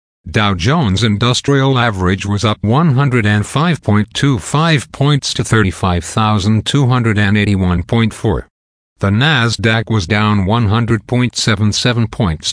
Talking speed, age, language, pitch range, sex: 75 wpm, 50-69, English, 100-125 Hz, male